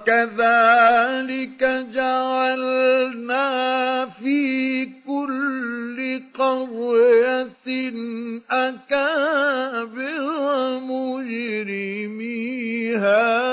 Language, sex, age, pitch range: Arabic, male, 50-69, 230-260 Hz